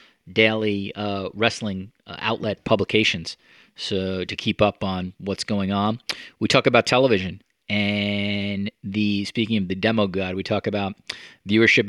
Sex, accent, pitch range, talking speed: male, American, 95-105 Hz, 140 wpm